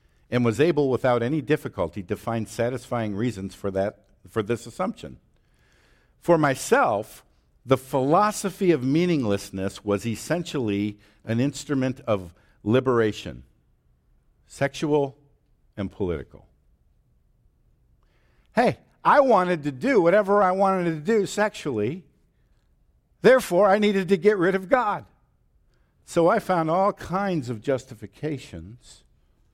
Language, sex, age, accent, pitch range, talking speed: English, male, 60-79, American, 100-150 Hz, 115 wpm